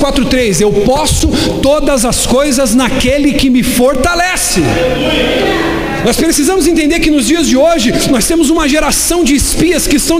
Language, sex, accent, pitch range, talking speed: Portuguese, male, Brazilian, 265-325 Hz, 160 wpm